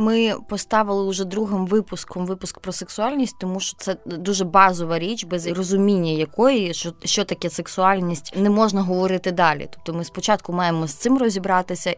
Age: 20-39